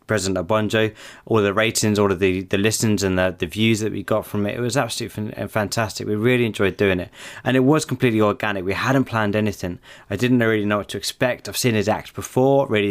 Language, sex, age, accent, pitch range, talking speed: English, male, 20-39, British, 95-115 Hz, 230 wpm